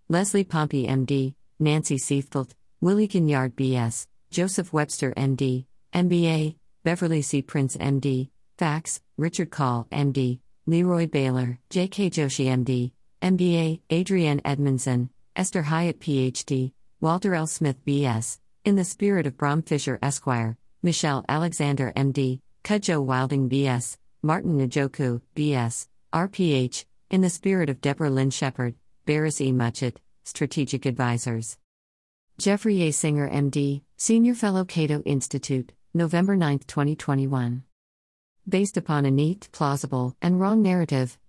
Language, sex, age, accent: English, female, 50-69, American